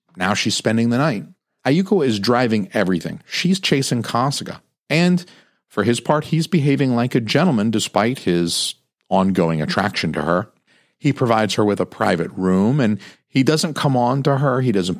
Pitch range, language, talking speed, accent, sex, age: 100-140 Hz, English, 170 wpm, American, male, 40-59